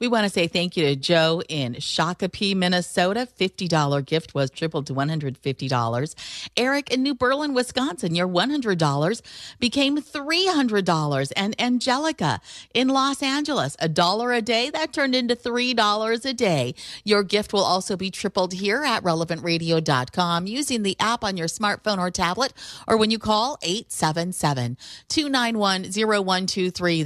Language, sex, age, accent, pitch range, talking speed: English, female, 40-59, American, 160-225 Hz, 140 wpm